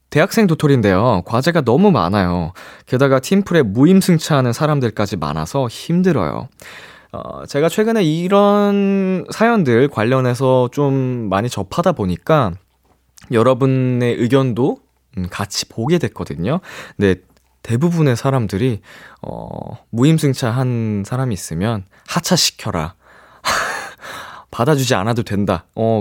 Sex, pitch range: male, 100-160 Hz